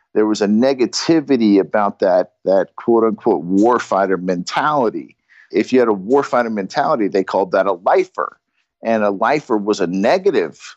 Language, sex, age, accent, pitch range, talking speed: English, male, 50-69, American, 105-145 Hz, 155 wpm